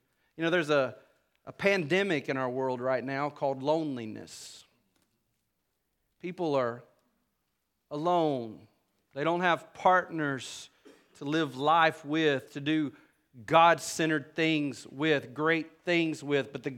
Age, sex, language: 40-59, male, English